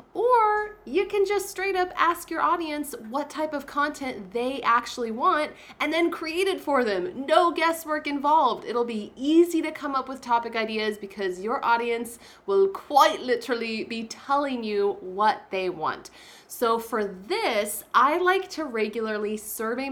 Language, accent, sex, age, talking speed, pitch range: English, American, female, 20-39, 165 wpm, 210-310 Hz